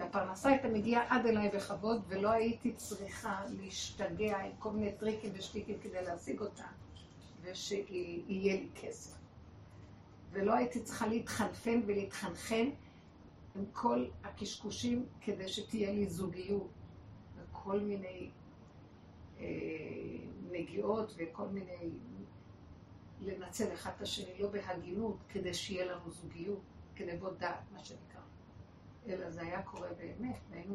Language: Hebrew